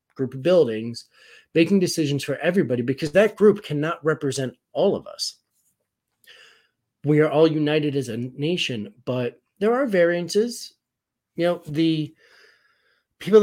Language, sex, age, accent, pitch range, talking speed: English, male, 30-49, American, 120-160 Hz, 135 wpm